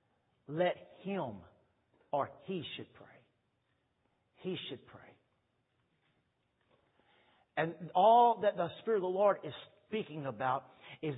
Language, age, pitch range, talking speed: English, 50-69, 175-255 Hz, 115 wpm